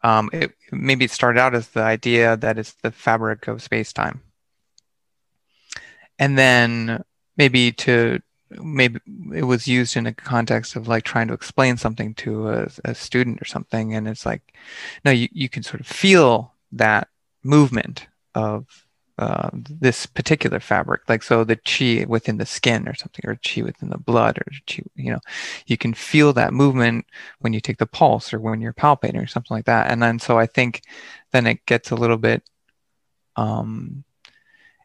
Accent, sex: American, male